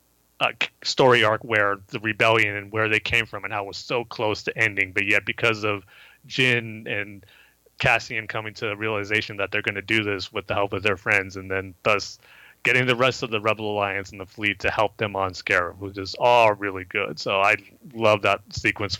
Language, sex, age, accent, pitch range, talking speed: English, male, 30-49, American, 100-120 Hz, 220 wpm